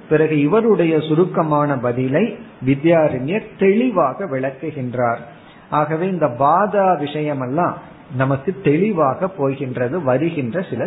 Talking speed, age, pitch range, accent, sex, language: 95 wpm, 50-69, 135-180 Hz, native, male, Tamil